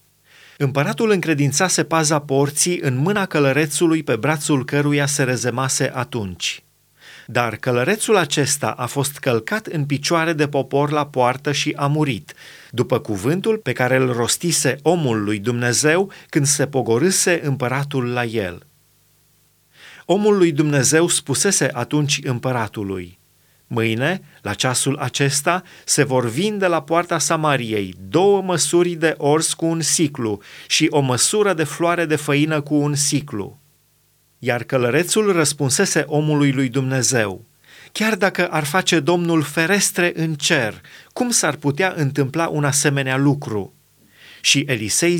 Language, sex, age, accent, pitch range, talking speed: Romanian, male, 30-49, native, 125-165 Hz, 135 wpm